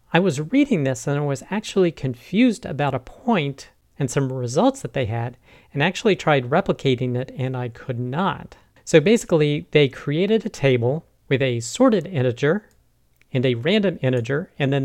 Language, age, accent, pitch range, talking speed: English, 40-59, American, 125-160 Hz, 175 wpm